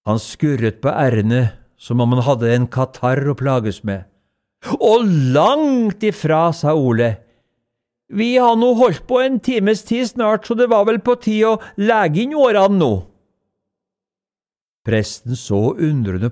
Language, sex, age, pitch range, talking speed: English, male, 60-79, 115-175 Hz, 150 wpm